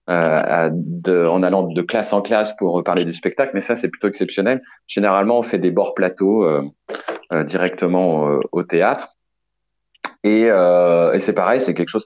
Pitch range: 85-100 Hz